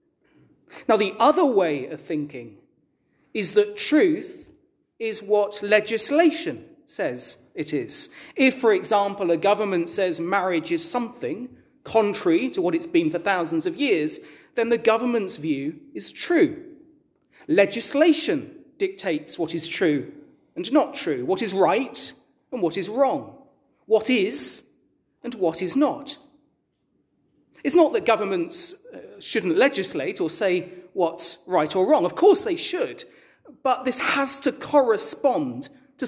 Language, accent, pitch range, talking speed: English, British, 225-335 Hz, 140 wpm